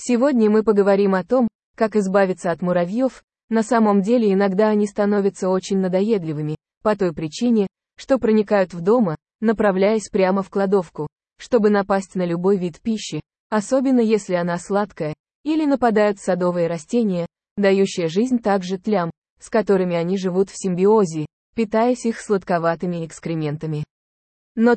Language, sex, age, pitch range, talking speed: English, female, 20-39, 180-220 Hz, 140 wpm